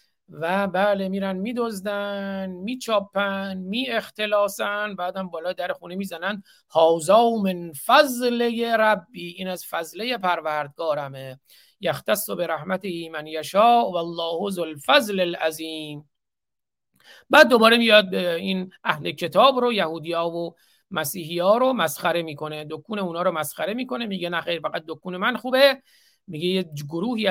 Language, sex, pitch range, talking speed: Persian, male, 170-220 Hz, 125 wpm